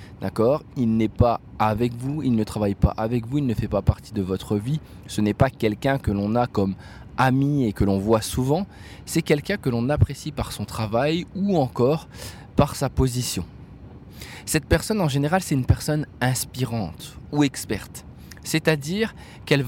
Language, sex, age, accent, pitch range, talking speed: French, male, 20-39, French, 110-140 Hz, 180 wpm